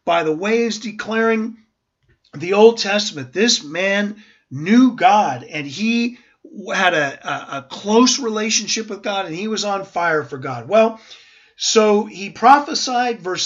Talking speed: 150 wpm